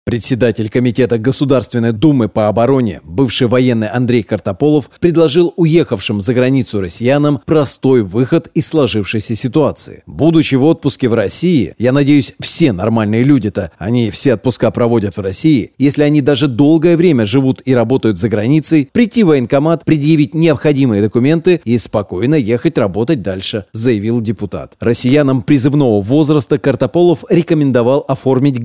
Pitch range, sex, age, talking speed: 115-150 Hz, male, 30-49, 135 wpm